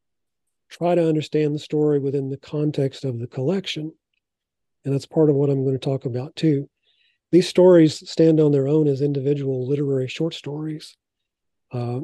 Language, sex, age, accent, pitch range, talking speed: English, male, 40-59, American, 130-150 Hz, 170 wpm